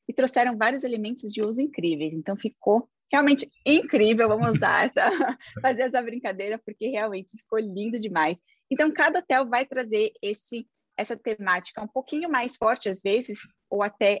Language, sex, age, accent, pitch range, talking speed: Portuguese, female, 20-39, Brazilian, 180-230 Hz, 160 wpm